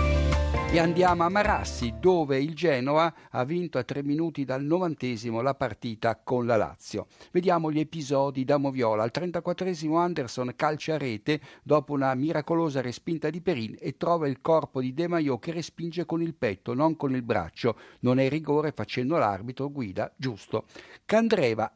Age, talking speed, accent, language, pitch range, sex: 60-79, 165 wpm, native, Italian, 125-170 Hz, male